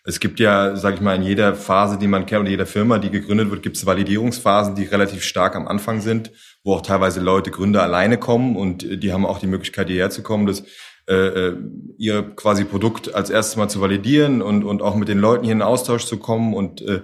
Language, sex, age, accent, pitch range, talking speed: German, male, 30-49, German, 95-110 Hz, 230 wpm